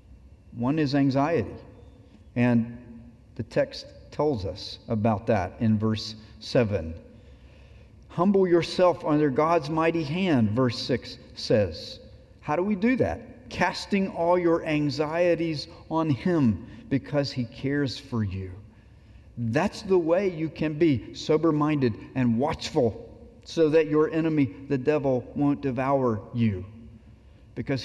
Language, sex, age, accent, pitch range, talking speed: English, male, 50-69, American, 115-150 Hz, 125 wpm